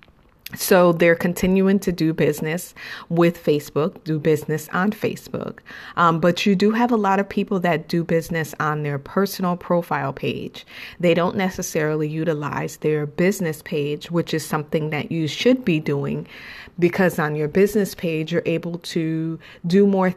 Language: English